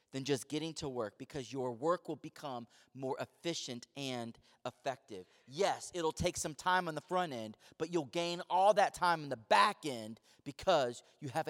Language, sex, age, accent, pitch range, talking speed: English, male, 30-49, American, 145-215 Hz, 190 wpm